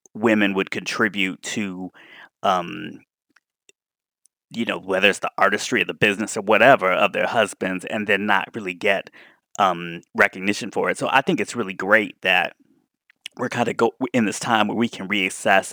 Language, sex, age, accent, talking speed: English, male, 30-49, American, 175 wpm